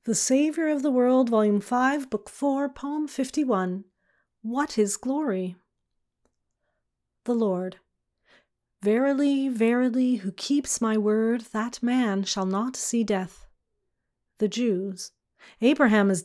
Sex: female